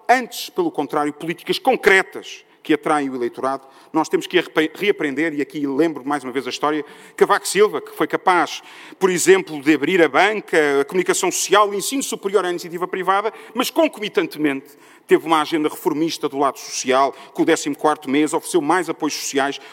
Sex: male